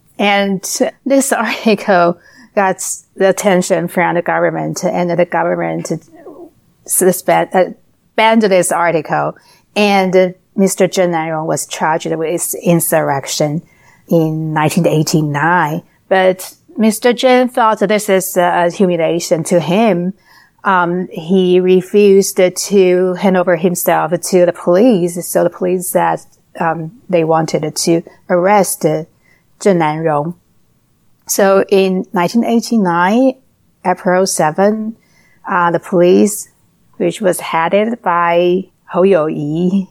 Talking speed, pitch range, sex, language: 115 wpm, 170-195 Hz, female, English